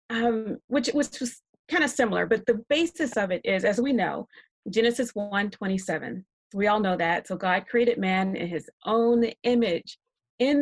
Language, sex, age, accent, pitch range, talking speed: English, female, 30-49, American, 195-240 Hz, 175 wpm